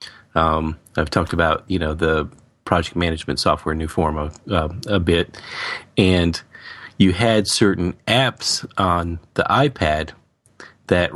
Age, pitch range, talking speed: 40-59, 85-100 Hz, 135 wpm